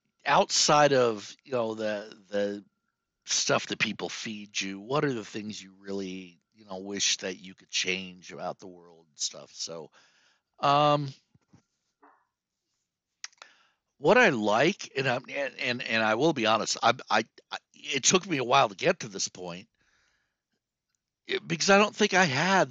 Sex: male